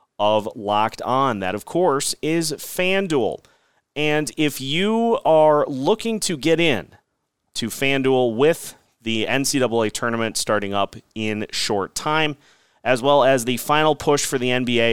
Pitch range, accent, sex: 115-160 Hz, American, male